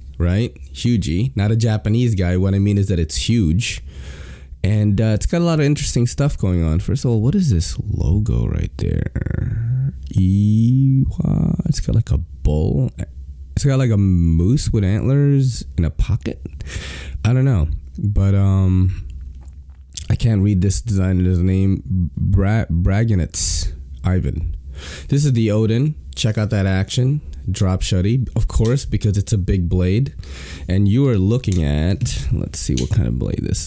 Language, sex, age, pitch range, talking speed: English, male, 20-39, 85-115 Hz, 165 wpm